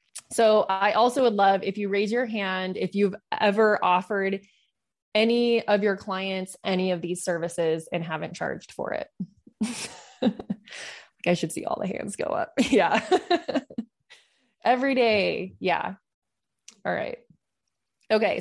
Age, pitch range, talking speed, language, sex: 20-39, 175-210 Hz, 135 wpm, English, female